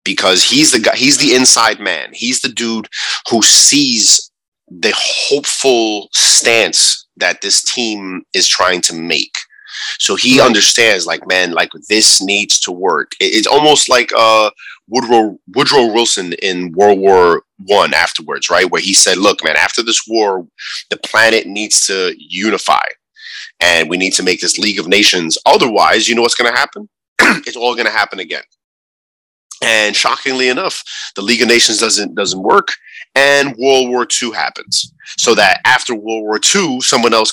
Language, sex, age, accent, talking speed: English, male, 30-49, American, 165 wpm